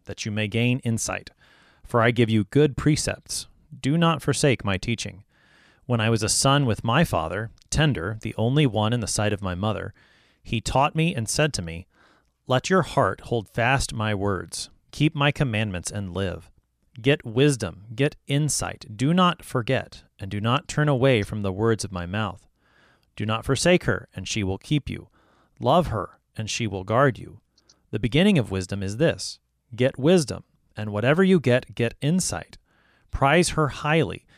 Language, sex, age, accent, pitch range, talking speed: English, male, 30-49, American, 100-135 Hz, 180 wpm